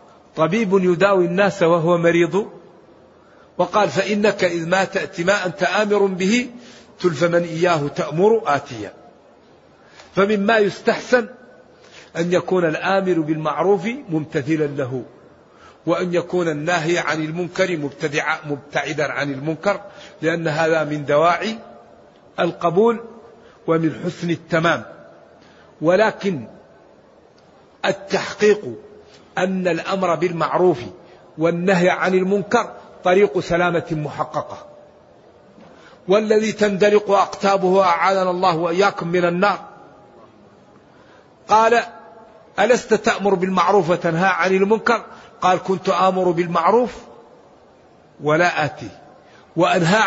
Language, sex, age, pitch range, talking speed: Arabic, male, 50-69, 170-210 Hz, 90 wpm